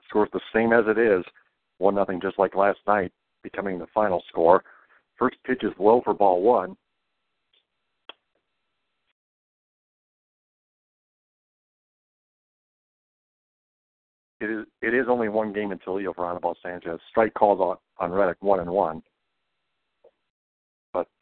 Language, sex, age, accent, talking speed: English, male, 50-69, American, 125 wpm